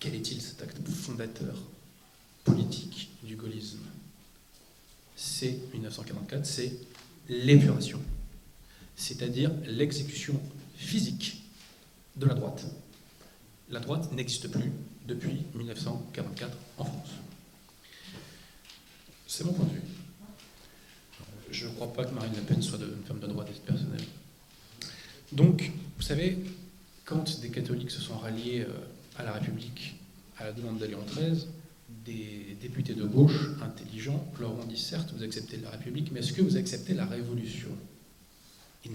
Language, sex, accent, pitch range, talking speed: French, male, French, 120-160 Hz, 130 wpm